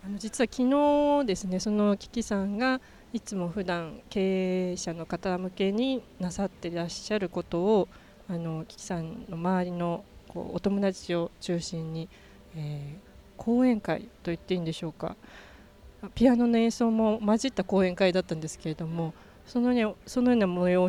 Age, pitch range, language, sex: 20-39, 175-225 Hz, Japanese, female